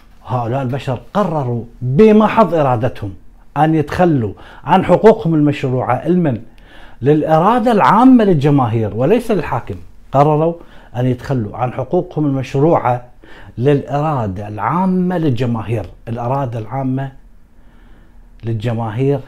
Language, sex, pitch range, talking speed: Arabic, male, 115-150 Hz, 85 wpm